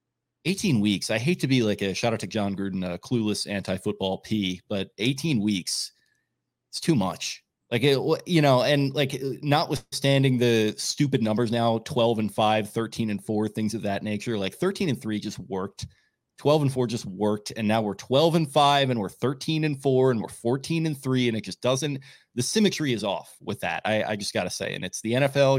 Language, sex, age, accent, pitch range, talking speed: English, male, 30-49, American, 100-130 Hz, 210 wpm